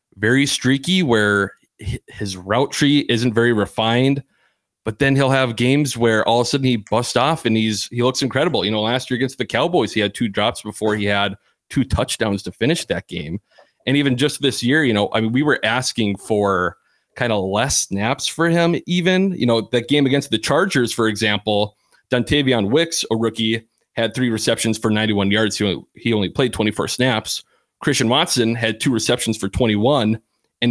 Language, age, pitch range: English, 30-49, 105-135 Hz